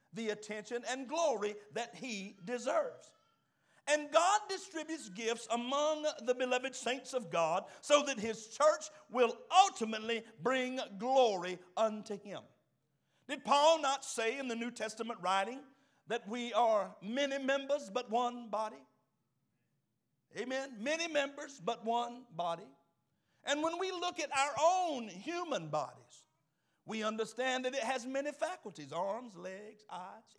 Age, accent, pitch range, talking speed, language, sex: 60-79, American, 195-275 Hz, 135 wpm, English, male